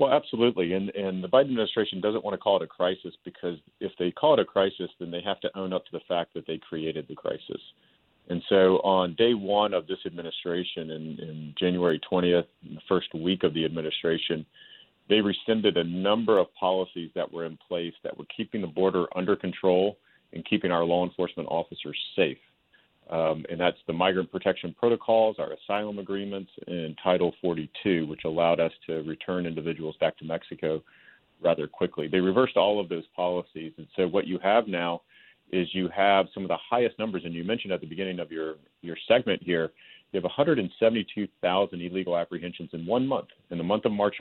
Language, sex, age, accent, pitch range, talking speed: English, male, 40-59, American, 85-100 Hz, 200 wpm